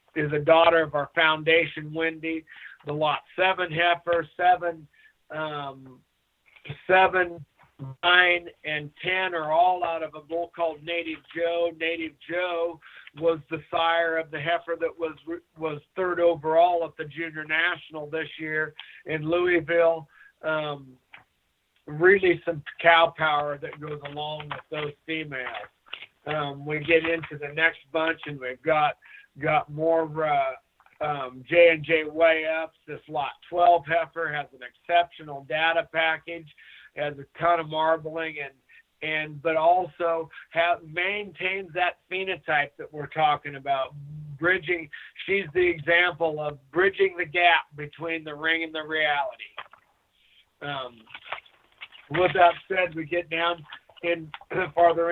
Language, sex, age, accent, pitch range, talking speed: English, male, 50-69, American, 150-170 Hz, 135 wpm